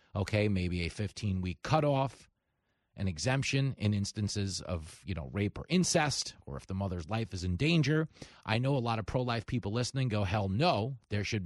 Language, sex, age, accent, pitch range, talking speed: English, male, 40-59, American, 95-130 Hz, 190 wpm